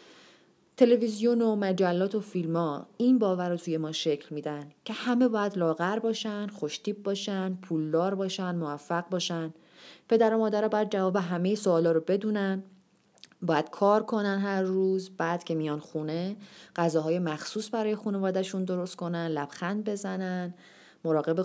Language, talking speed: Persian, 140 wpm